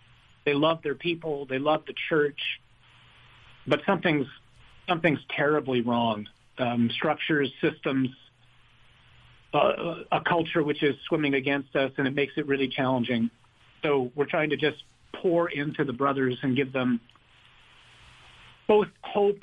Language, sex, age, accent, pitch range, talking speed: English, male, 50-69, American, 125-160 Hz, 135 wpm